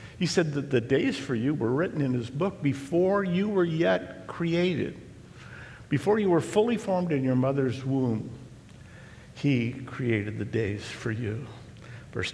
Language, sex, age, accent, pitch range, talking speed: English, male, 60-79, American, 115-140 Hz, 160 wpm